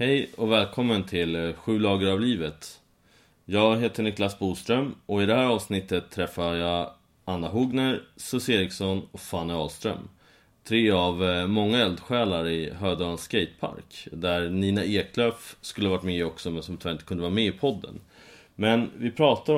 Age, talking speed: 30-49, 160 wpm